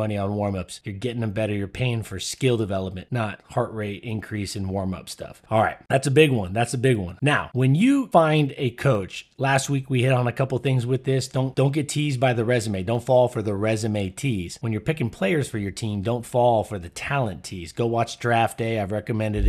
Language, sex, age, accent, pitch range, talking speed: English, male, 30-49, American, 110-140 Hz, 235 wpm